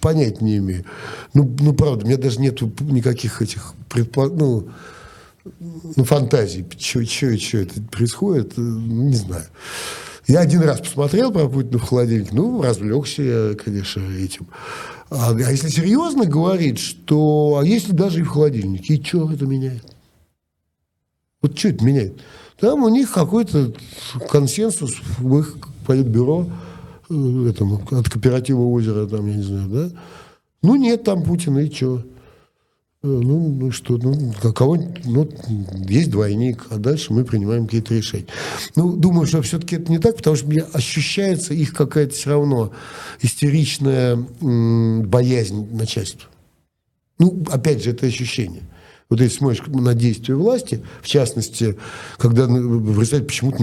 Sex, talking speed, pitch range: male, 140 wpm, 115-150 Hz